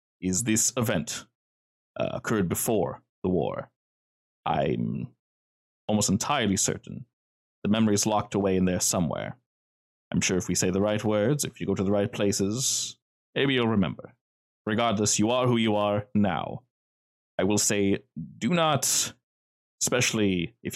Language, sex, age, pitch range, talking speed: English, male, 30-49, 95-120 Hz, 150 wpm